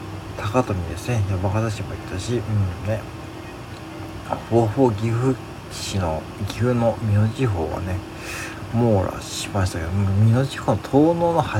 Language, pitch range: Japanese, 100-115 Hz